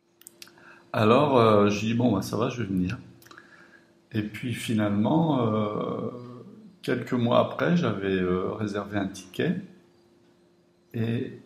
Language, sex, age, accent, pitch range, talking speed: French, male, 60-79, French, 100-125 Hz, 120 wpm